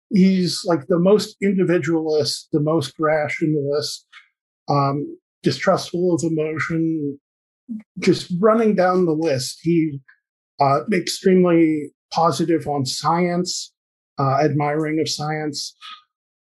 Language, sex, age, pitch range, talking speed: English, male, 50-69, 145-180 Hz, 95 wpm